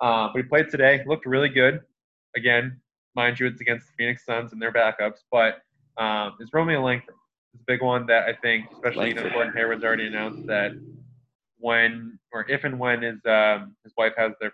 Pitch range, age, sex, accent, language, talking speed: 110-125 Hz, 20-39, male, American, English, 200 wpm